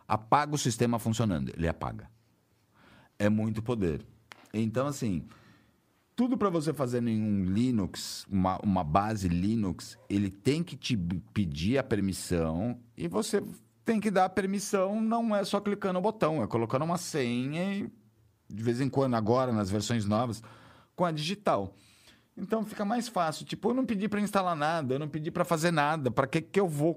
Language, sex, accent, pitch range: Portuguese, male, Brazilian, 105-165 Hz